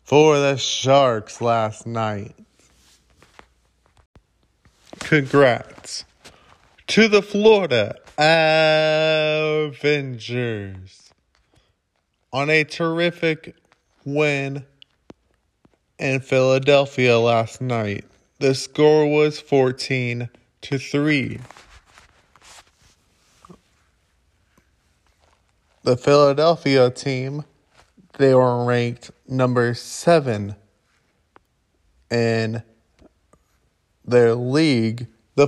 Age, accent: 20-39, American